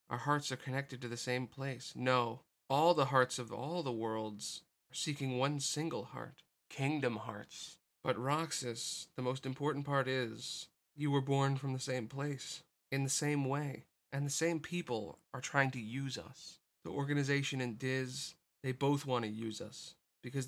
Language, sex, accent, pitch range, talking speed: English, male, American, 115-140 Hz, 180 wpm